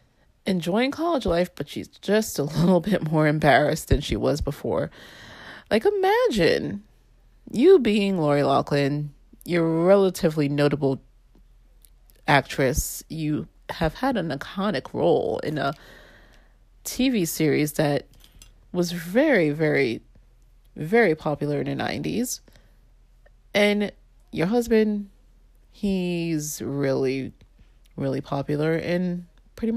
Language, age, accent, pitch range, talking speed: English, 30-49, American, 150-230 Hz, 110 wpm